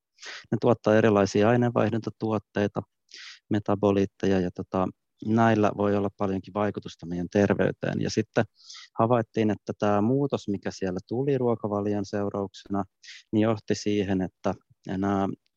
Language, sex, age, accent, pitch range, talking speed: Finnish, male, 30-49, native, 95-110 Hz, 115 wpm